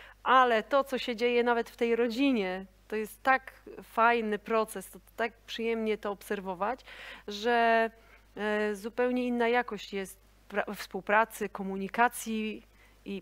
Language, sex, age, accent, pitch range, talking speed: Polish, female, 30-49, native, 195-235 Hz, 125 wpm